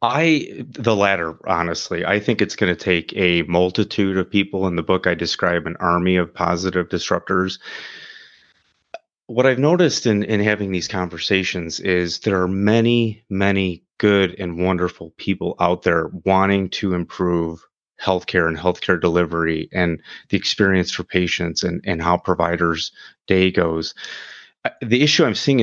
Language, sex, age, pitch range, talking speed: English, male, 30-49, 90-105 Hz, 150 wpm